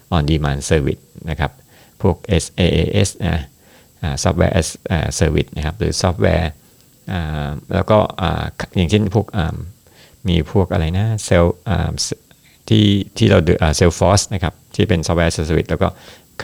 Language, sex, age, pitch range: Thai, male, 60-79, 80-100 Hz